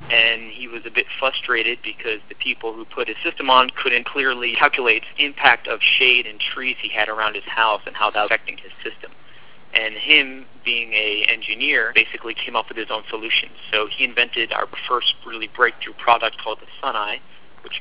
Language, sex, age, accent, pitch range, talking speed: English, male, 40-59, American, 110-125 Hz, 200 wpm